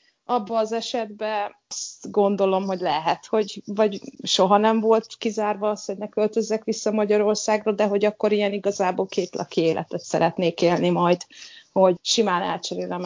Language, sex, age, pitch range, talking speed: Hungarian, female, 30-49, 180-225 Hz, 145 wpm